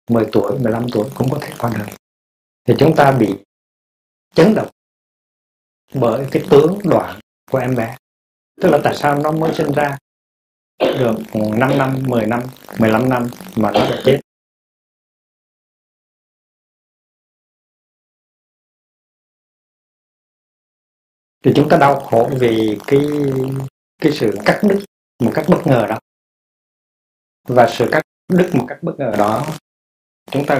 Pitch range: 100-130 Hz